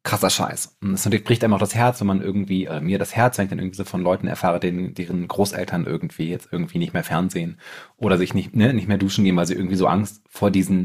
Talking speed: 270 wpm